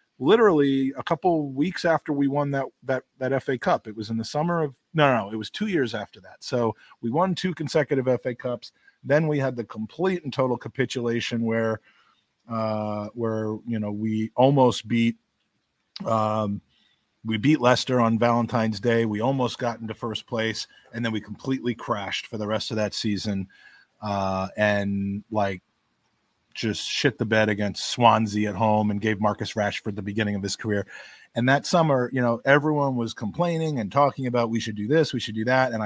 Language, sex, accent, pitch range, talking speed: English, male, American, 110-130 Hz, 190 wpm